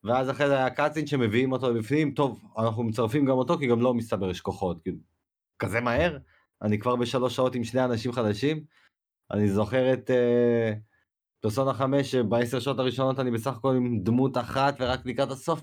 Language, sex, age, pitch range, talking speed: Hebrew, male, 30-49, 100-130 Hz, 185 wpm